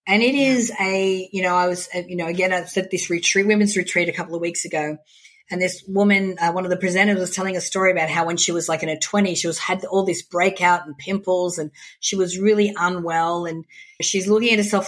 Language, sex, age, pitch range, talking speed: English, female, 30-49, 170-200 Hz, 250 wpm